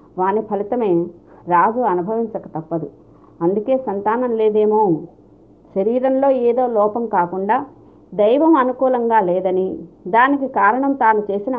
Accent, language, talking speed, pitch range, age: native, Telugu, 100 wpm, 185-245 Hz, 50-69